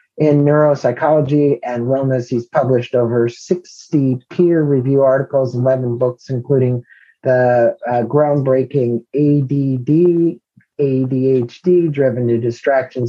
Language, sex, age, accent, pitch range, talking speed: English, male, 40-59, American, 120-145 Hz, 85 wpm